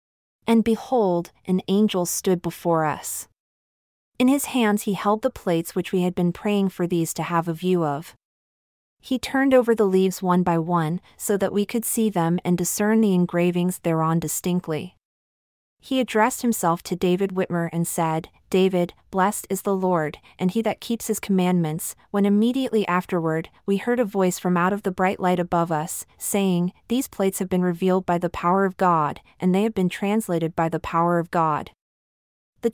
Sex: female